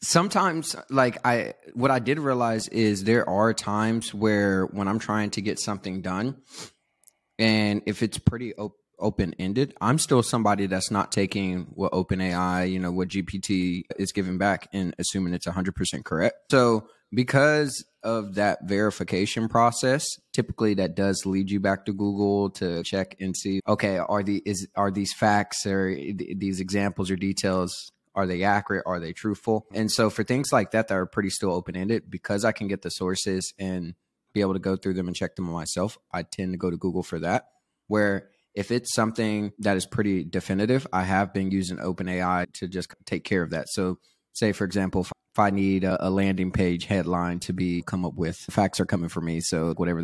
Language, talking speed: English, 195 wpm